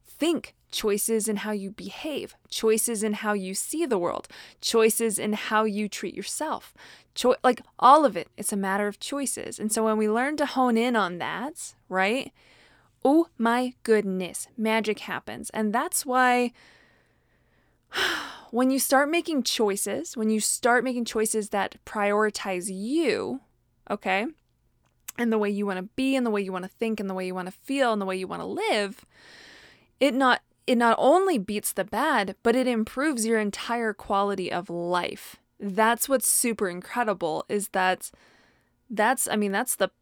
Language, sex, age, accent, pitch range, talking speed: English, female, 20-39, American, 205-255 Hz, 175 wpm